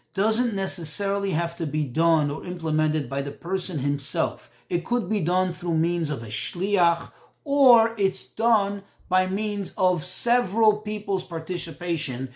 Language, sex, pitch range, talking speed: English, male, 165-215 Hz, 145 wpm